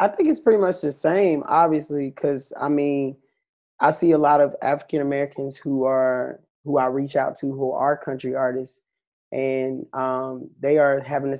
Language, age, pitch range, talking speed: English, 20-39, 130-145 Hz, 180 wpm